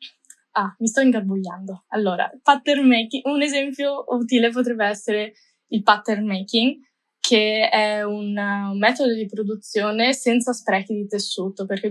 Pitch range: 200-230 Hz